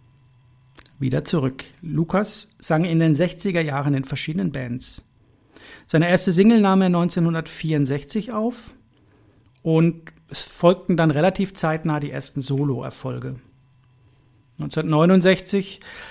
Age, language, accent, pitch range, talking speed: 40-59, German, German, 130-170 Hz, 100 wpm